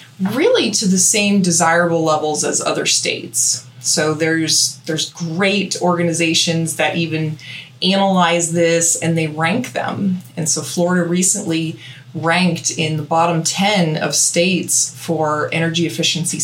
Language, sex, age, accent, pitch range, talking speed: English, female, 20-39, American, 155-190 Hz, 130 wpm